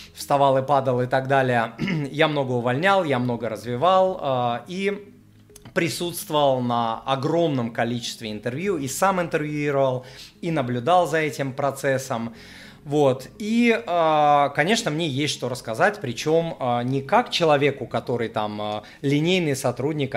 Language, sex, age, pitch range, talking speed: Russian, male, 30-49, 120-160 Hz, 125 wpm